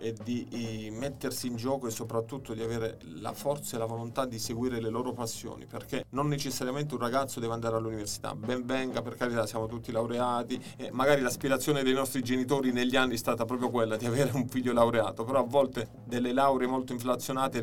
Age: 30-49